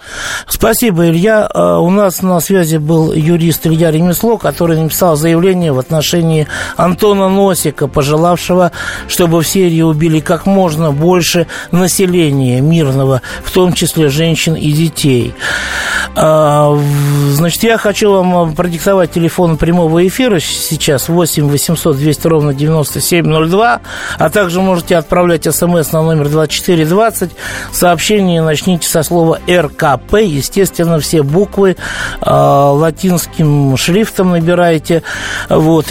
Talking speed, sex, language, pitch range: 115 wpm, male, Russian, 145-180 Hz